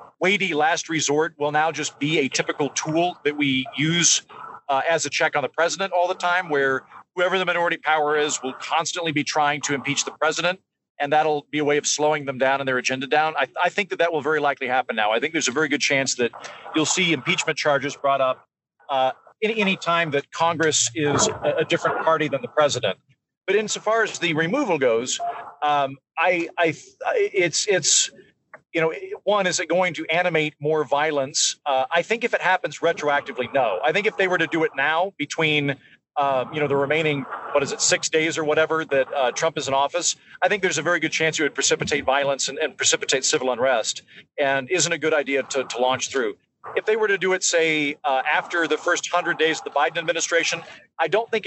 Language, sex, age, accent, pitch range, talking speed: English, male, 40-59, American, 145-175 Hz, 225 wpm